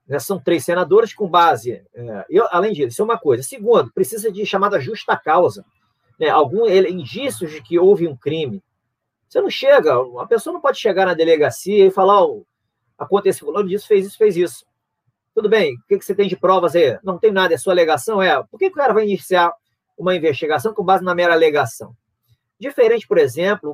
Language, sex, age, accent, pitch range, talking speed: Portuguese, male, 40-59, Brazilian, 170-285 Hz, 195 wpm